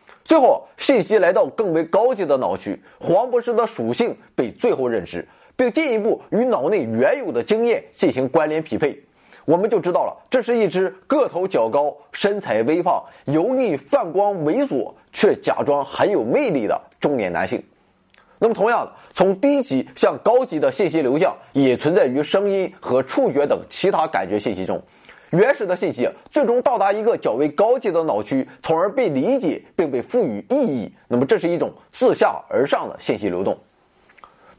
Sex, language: male, Chinese